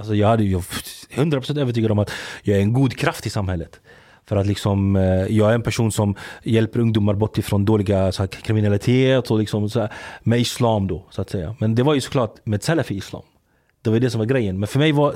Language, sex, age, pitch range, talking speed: Swedish, male, 30-49, 100-125 Hz, 240 wpm